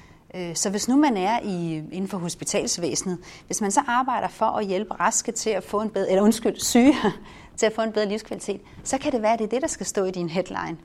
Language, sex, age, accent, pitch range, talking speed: Danish, female, 40-59, native, 180-230 Hz, 250 wpm